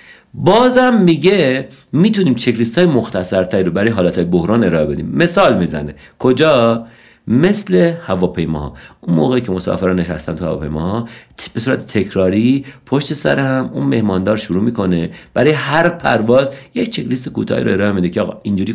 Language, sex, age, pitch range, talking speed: Persian, male, 50-69, 90-135 Hz, 145 wpm